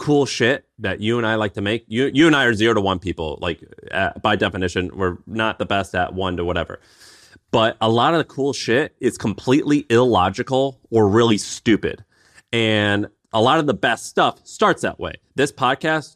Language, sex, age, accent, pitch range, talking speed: English, male, 30-49, American, 100-125 Hz, 200 wpm